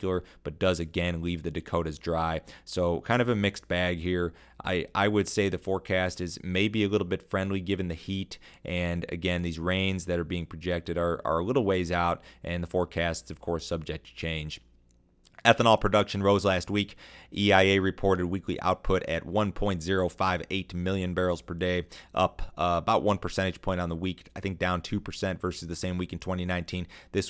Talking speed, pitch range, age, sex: 190 wpm, 85-95 Hz, 30-49, male